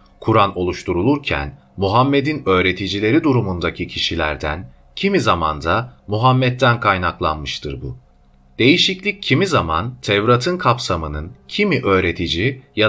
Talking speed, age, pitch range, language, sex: 90 wpm, 40-59, 80-125 Hz, Turkish, male